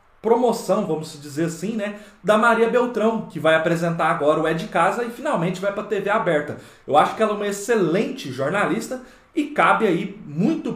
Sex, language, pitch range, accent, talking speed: male, Portuguese, 155-220 Hz, Brazilian, 195 wpm